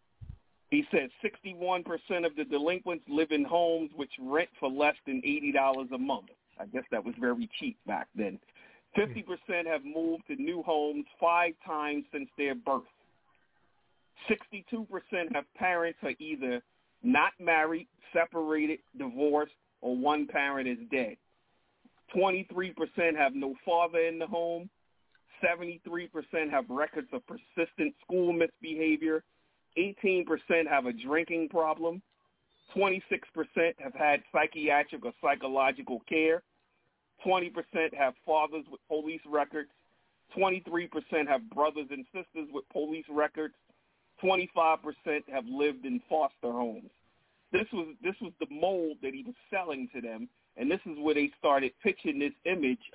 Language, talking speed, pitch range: English, 135 wpm, 145-185 Hz